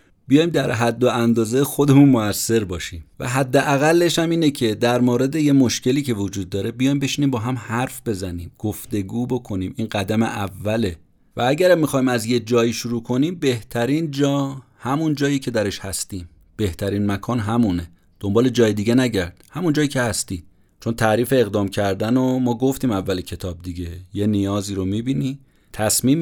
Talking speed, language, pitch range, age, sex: 165 wpm, Persian, 95-135 Hz, 30-49, male